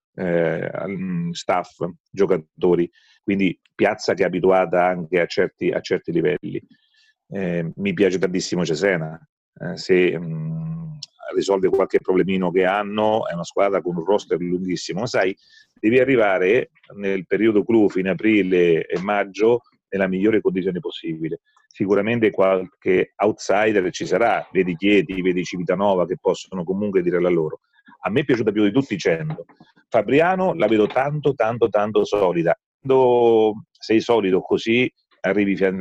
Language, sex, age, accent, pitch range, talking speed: Italian, male, 40-59, native, 90-145 Hz, 140 wpm